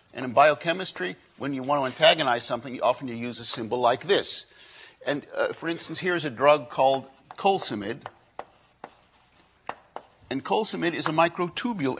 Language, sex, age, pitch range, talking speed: English, male, 50-69, 125-190 Hz, 155 wpm